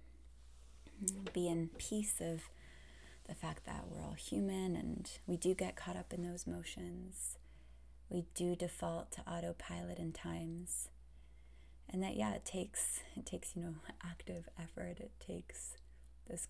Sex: female